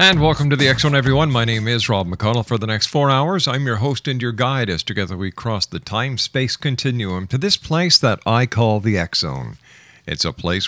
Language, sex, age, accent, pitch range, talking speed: English, male, 50-69, American, 100-130 Hz, 225 wpm